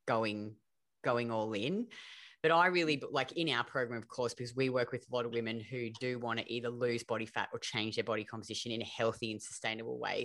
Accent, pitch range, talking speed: Australian, 115-145 Hz, 235 wpm